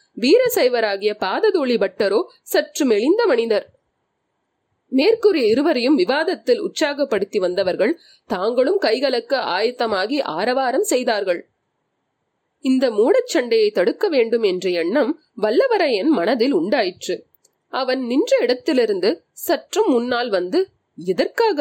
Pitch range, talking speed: 245-405 Hz, 90 wpm